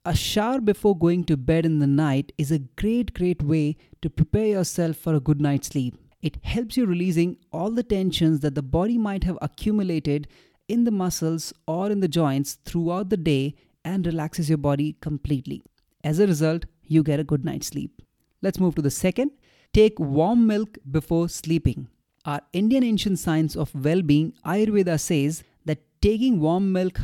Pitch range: 145-185 Hz